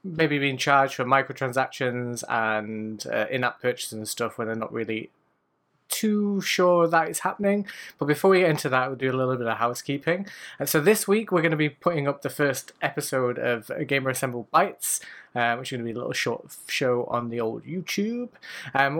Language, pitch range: English, 120-160 Hz